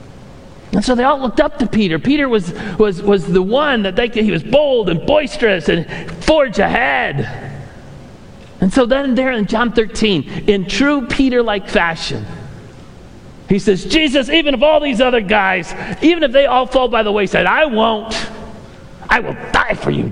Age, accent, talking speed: 40-59, American, 180 wpm